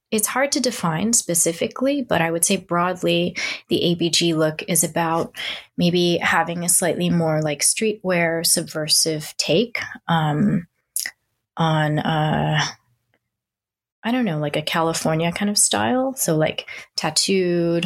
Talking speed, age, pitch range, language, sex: 130 wpm, 20-39, 160-195 Hz, English, female